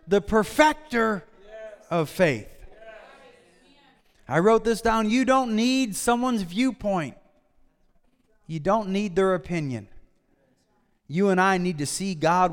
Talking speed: 120 wpm